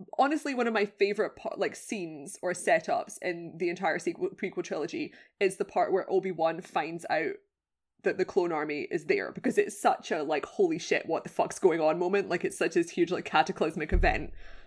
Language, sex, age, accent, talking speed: English, female, 20-39, British, 200 wpm